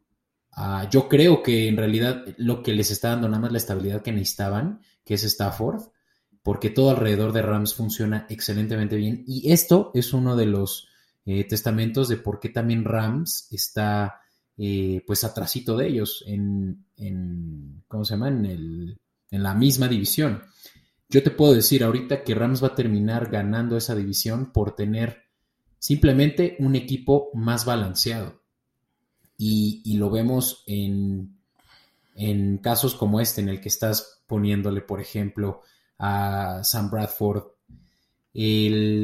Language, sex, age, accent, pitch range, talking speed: Spanish, male, 30-49, Mexican, 100-120 Hz, 150 wpm